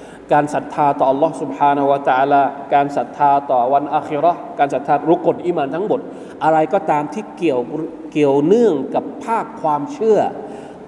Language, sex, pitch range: Thai, male, 145-195 Hz